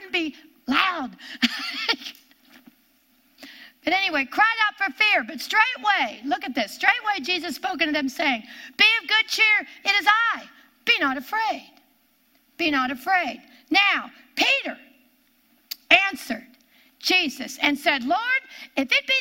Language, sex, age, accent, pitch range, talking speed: English, female, 60-79, American, 255-305 Hz, 130 wpm